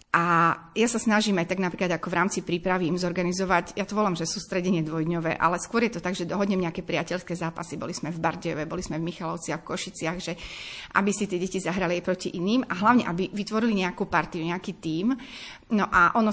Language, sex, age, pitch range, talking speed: Slovak, female, 30-49, 175-210 Hz, 220 wpm